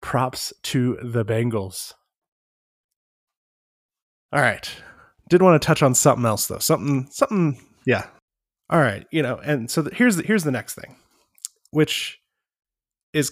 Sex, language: male, English